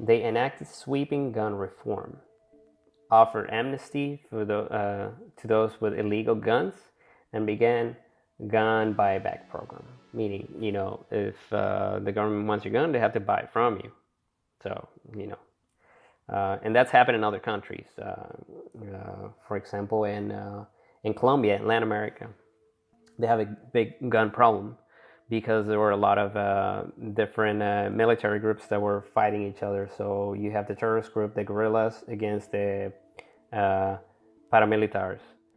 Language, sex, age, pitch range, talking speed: English, male, 20-39, 100-110 Hz, 150 wpm